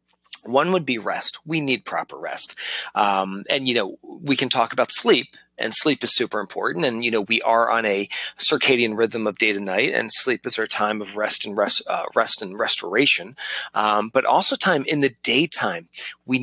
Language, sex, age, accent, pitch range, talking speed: English, male, 30-49, American, 105-140 Hz, 205 wpm